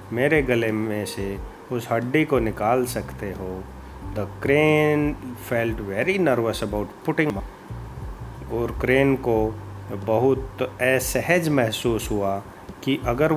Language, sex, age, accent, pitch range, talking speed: English, male, 30-49, Indian, 100-135 Hz, 115 wpm